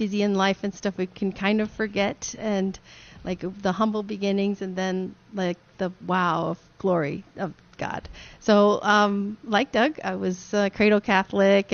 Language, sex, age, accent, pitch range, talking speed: English, female, 40-59, American, 195-225 Hz, 165 wpm